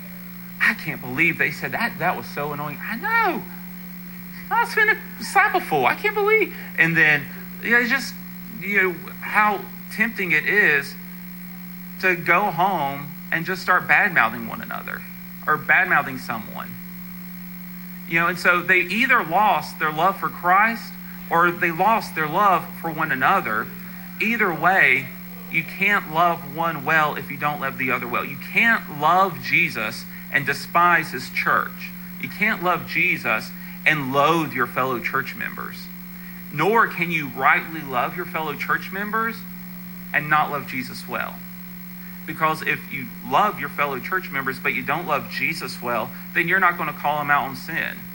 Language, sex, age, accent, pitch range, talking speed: English, male, 40-59, American, 165-185 Hz, 170 wpm